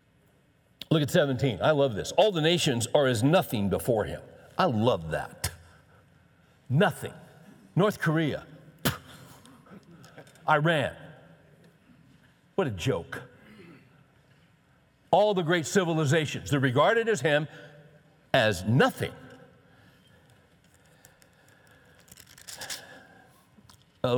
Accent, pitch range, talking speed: American, 135-165 Hz, 85 wpm